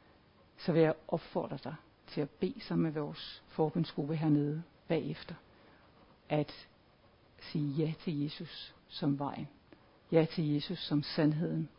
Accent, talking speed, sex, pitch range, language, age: native, 130 wpm, female, 145-165 Hz, Danish, 60-79